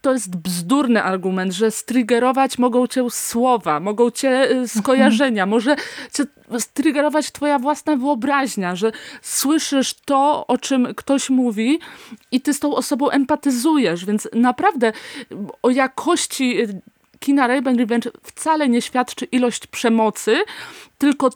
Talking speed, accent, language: 120 wpm, native, Polish